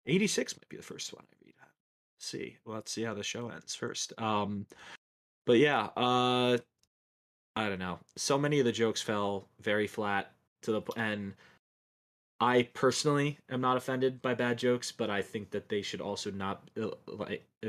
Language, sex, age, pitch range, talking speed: English, male, 20-39, 100-115 Hz, 185 wpm